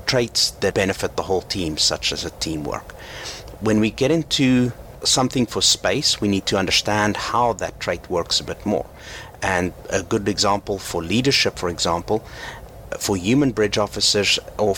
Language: English